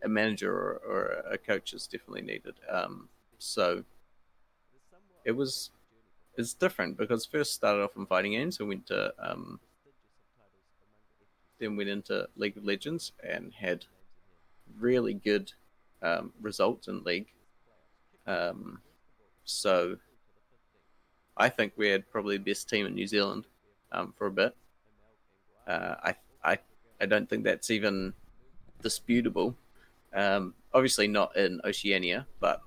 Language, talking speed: English, 130 wpm